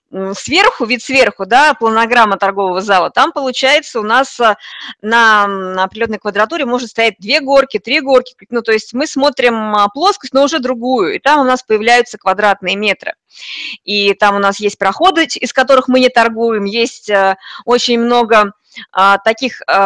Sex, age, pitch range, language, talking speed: female, 20-39, 200-260 Hz, Russian, 155 wpm